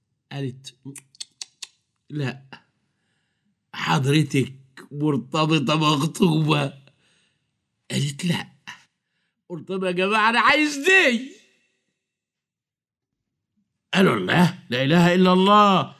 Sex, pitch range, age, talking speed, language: male, 145-190 Hz, 50-69, 70 wpm, Arabic